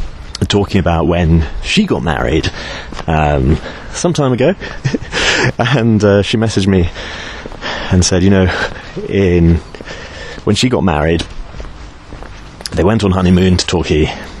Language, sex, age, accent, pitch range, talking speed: English, male, 30-49, British, 80-100 Hz, 125 wpm